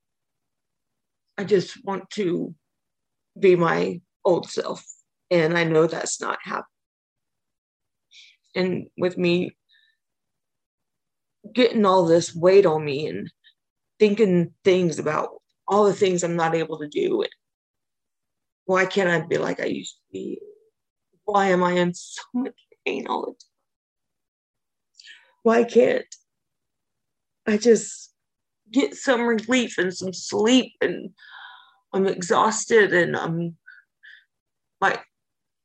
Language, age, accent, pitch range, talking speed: English, 30-49, American, 180-245 Hz, 120 wpm